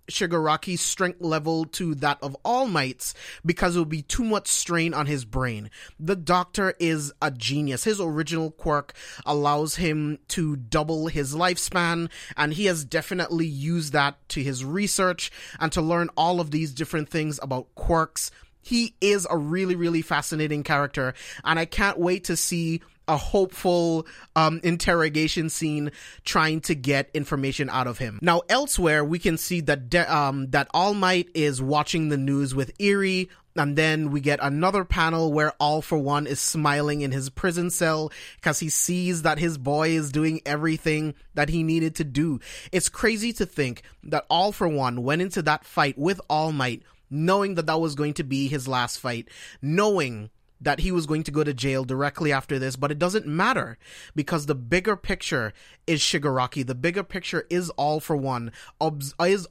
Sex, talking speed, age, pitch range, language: male, 180 wpm, 30-49, 145-175 Hz, English